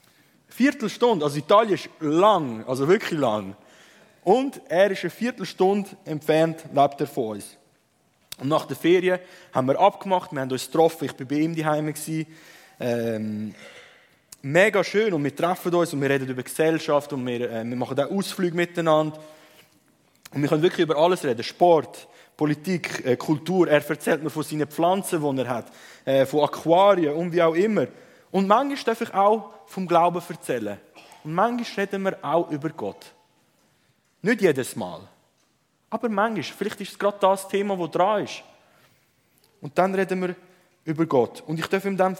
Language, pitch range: German, 145-190 Hz